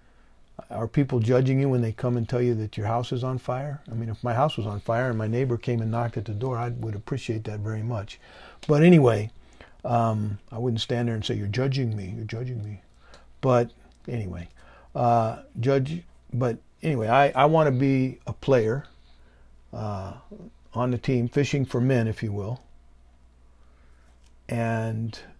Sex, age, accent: male, 50-69, American